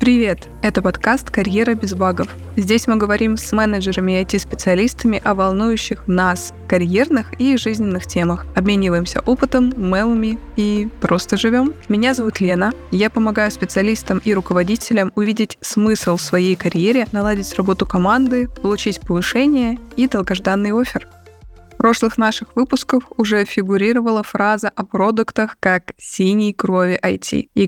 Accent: native